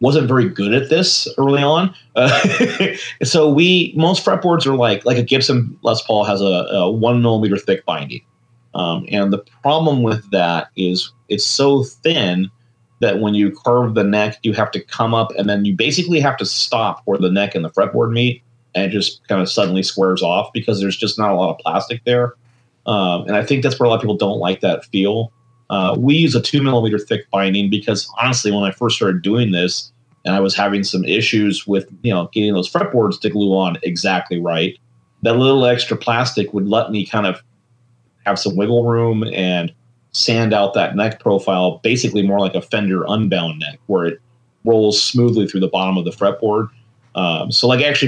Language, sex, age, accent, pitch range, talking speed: English, male, 30-49, American, 100-120 Hz, 205 wpm